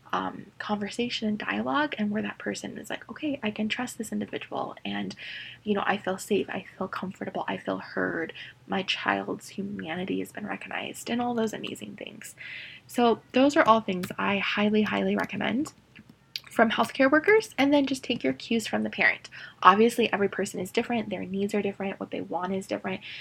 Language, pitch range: English, 185-230 Hz